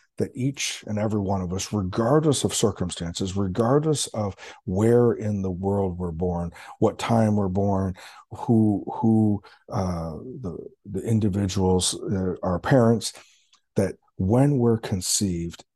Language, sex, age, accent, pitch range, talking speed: English, male, 50-69, American, 90-110 Hz, 135 wpm